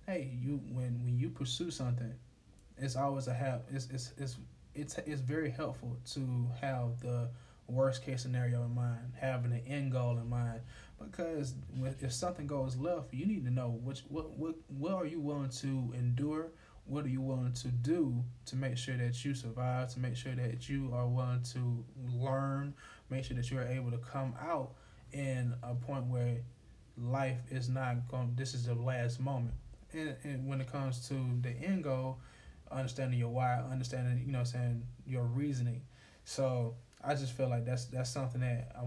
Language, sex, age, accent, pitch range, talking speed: English, male, 20-39, American, 120-135 Hz, 190 wpm